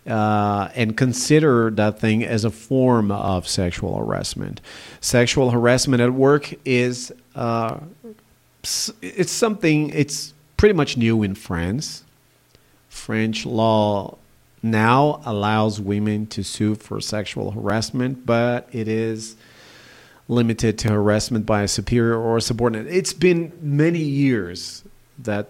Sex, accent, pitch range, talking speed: male, American, 105-125 Hz, 120 wpm